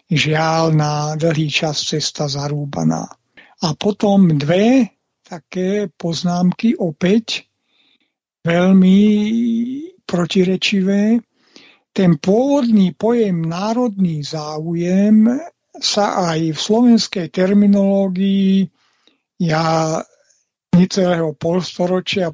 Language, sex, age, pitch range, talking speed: Slovak, male, 60-79, 160-200 Hz, 75 wpm